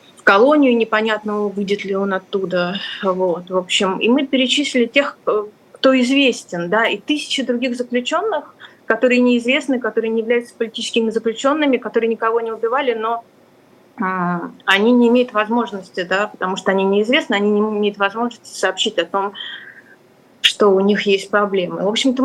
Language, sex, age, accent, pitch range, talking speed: Russian, female, 20-39, native, 190-245 Hz, 155 wpm